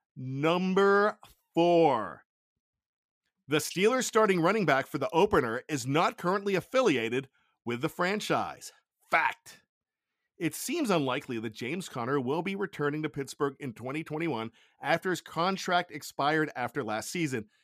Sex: male